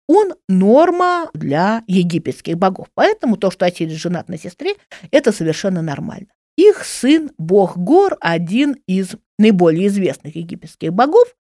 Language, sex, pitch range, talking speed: Russian, female, 175-265 Hz, 130 wpm